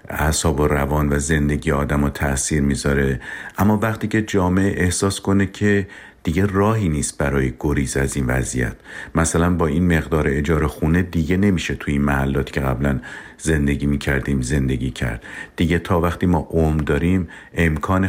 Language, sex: Persian, male